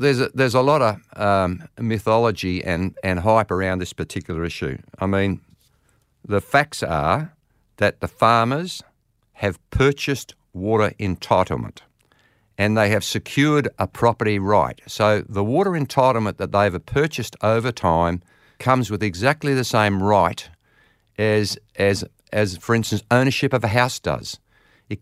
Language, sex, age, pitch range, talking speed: English, male, 50-69, 100-135 Hz, 145 wpm